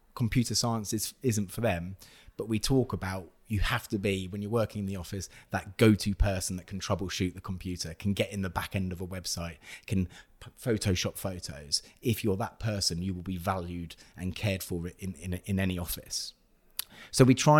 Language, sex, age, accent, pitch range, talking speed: English, male, 30-49, British, 95-110 Hz, 200 wpm